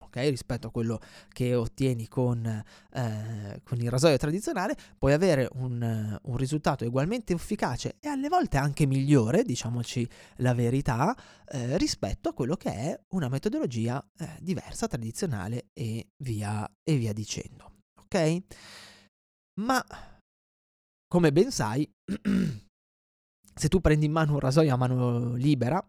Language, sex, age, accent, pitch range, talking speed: Italian, male, 20-39, native, 110-150 Hz, 135 wpm